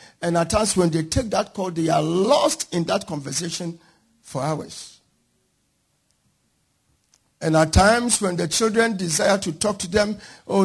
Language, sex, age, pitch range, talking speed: English, male, 50-69, 155-215 Hz, 160 wpm